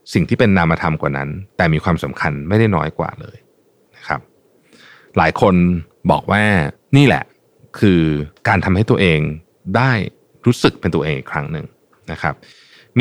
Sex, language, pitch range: male, Thai, 85-120 Hz